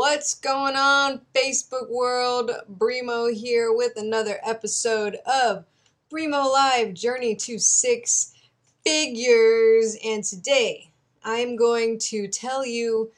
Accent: American